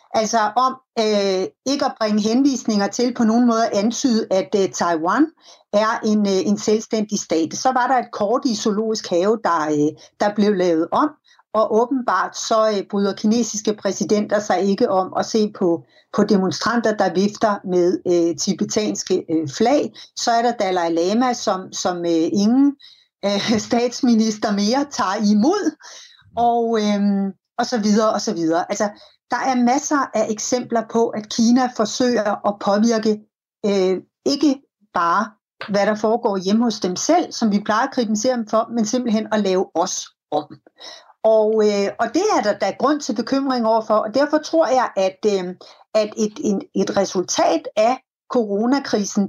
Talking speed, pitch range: 165 wpm, 200-245 Hz